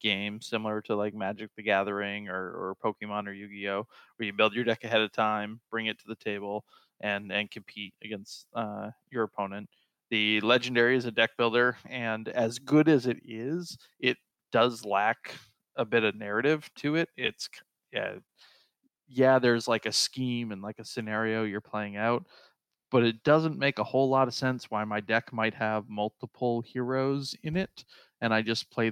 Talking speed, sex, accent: 185 wpm, male, American